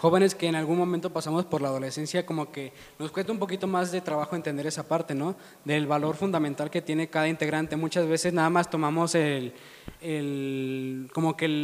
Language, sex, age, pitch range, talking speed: Spanish, male, 20-39, 155-180 Hz, 195 wpm